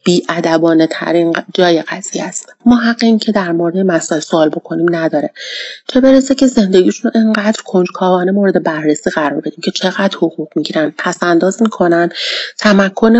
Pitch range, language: 180-225 Hz, Persian